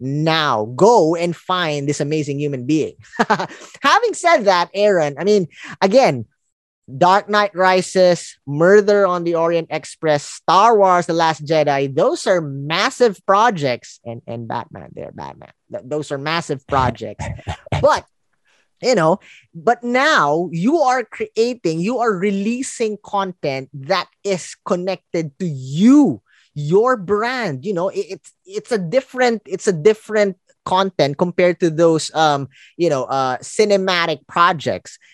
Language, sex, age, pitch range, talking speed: English, male, 20-39, 150-210 Hz, 135 wpm